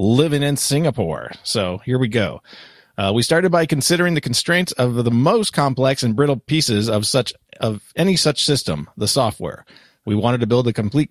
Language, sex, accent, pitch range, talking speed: English, male, American, 110-145 Hz, 185 wpm